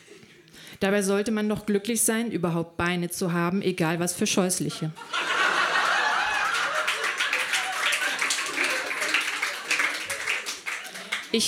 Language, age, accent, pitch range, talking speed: German, 30-49, German, 185-235 Hz, 80 wpm